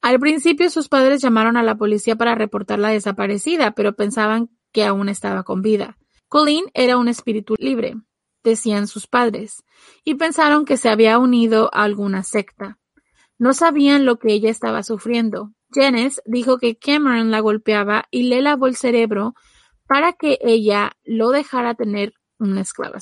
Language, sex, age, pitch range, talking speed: Spanish, female, 30-49, 215-260 Hz, 160 wpm